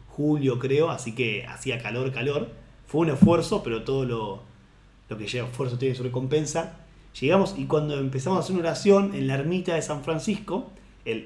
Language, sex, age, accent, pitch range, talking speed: Spanish, male, 30-49, Argentinian, 125-170 Hz, 185 wpm